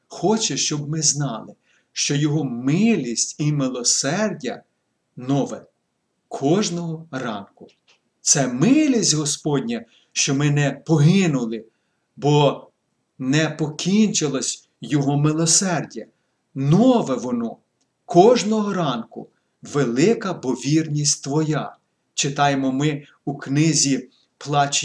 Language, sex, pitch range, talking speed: Ukrainian, male, 140-180 Hz, 85 wpm